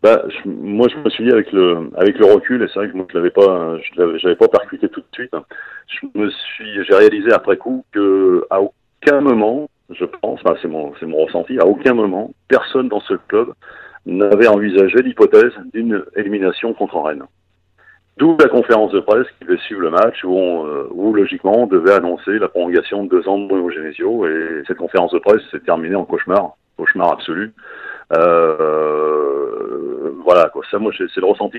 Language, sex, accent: French, male, French